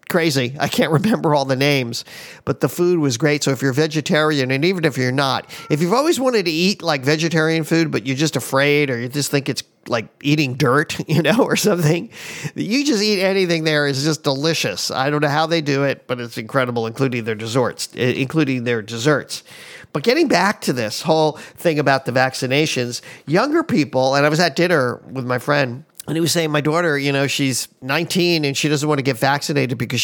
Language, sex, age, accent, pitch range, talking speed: English, male, 50-69, American, 135-170 Hz, 215 wpm